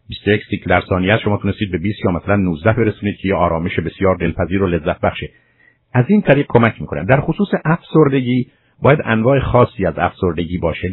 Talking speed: 175 wpm